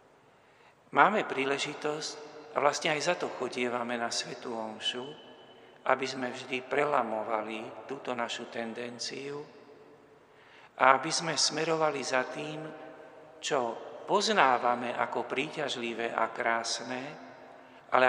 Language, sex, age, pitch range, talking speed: Slovak, male, 50-69, 120-130 Hz, 105 wpm